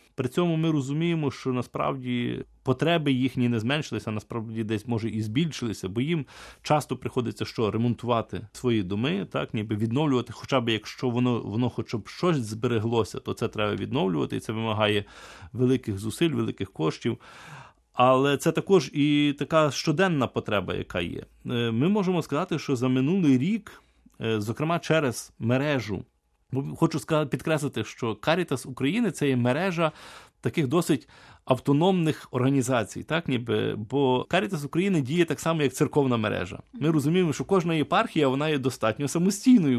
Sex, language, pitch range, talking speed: male, Ukrainian, 115-150 Hz, 150 wpm